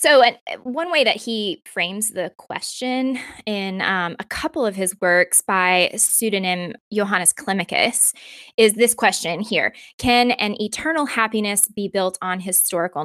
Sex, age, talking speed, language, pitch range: female, 20-39, 145 wpm, English, 185-225 Hz